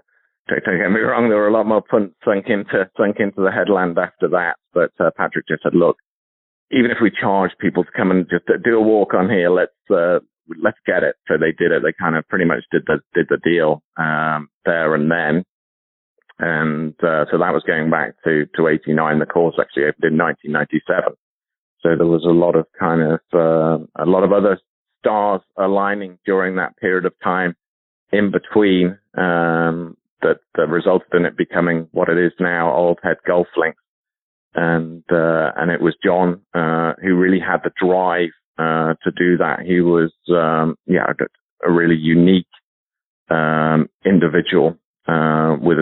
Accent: British